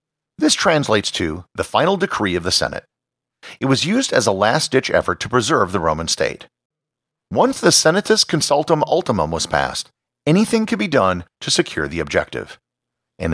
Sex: male